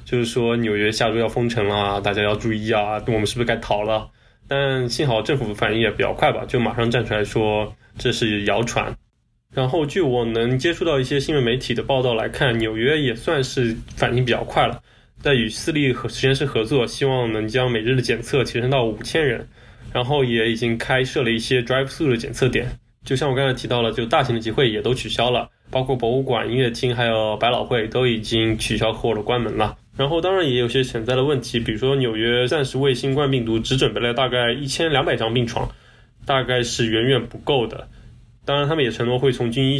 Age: 20-39